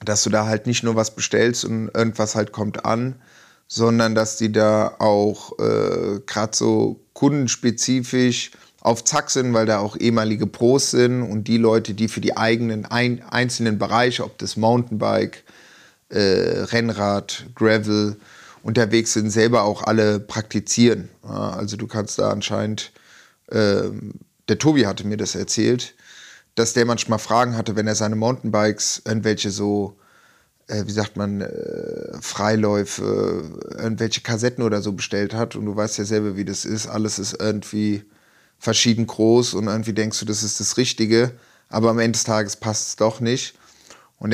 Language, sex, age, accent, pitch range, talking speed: German, male, 30-49, German, 105-115 Hz, 160 wpm